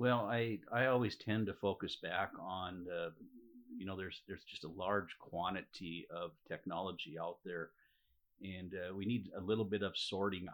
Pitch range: 90-100 Hz